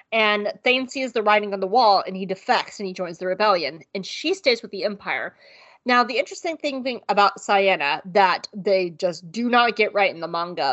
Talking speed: 215 wpm